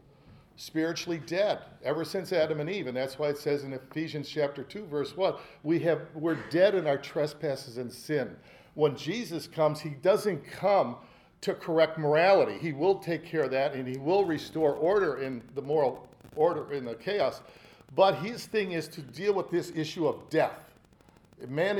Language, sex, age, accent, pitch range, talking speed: English, male, 50-69, American, 140-170 Hz, 180 wpm